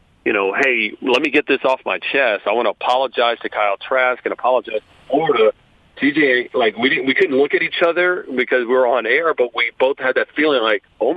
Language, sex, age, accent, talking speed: English, male, 40-59, American, 240 wpm